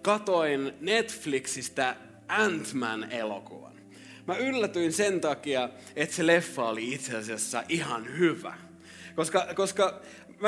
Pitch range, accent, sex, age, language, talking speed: 120-180 Hz, native, male, 30-49, Finnish, 105 wpm